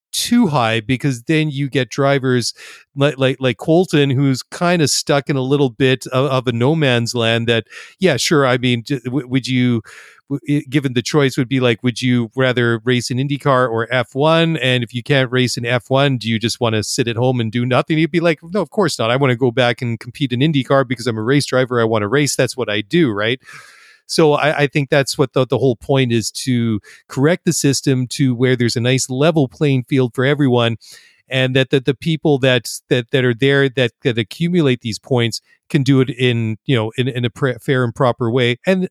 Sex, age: male, 40-59